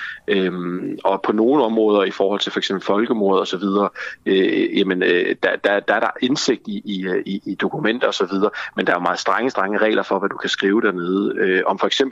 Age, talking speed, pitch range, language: 30-49, 220 wpm, 95-130 Hz, Danish